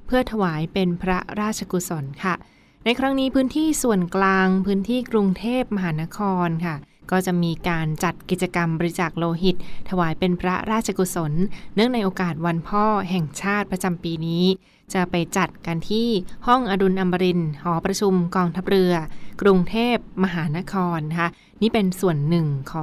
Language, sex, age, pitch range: Thai, female, 20-39, 170-195 Hz